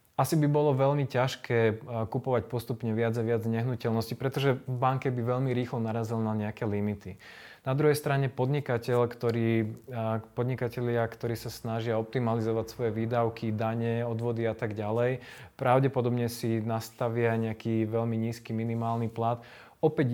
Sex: male